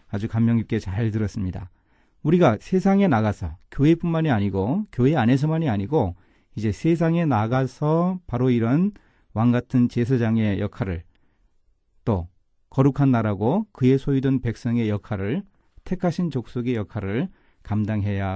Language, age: Korean, 40-59